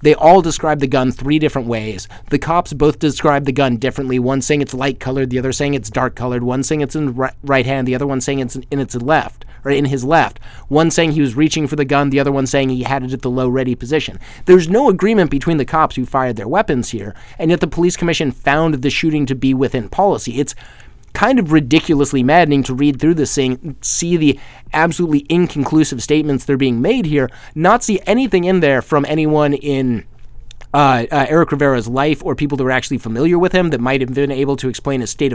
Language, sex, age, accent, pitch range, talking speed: English, male, 30-49, American, 130-165 Hz, 235 wpm